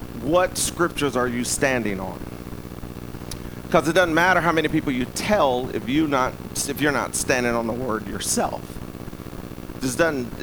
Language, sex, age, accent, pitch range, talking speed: English, male, 40-59, American, 95-155 Hz, 160 wpm